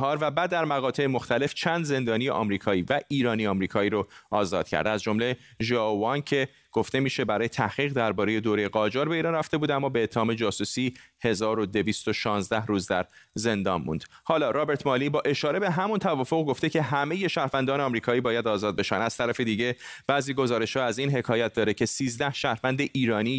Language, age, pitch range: Persian, 30-49, 110-140 Hz